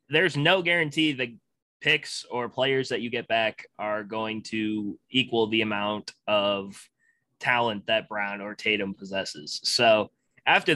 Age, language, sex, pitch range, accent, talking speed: 20-39, English, male, 105-130 Hz, American, 145 wpm